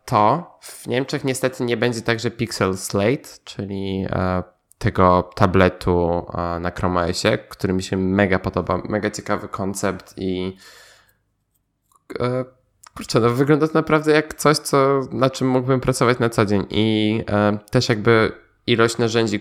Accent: native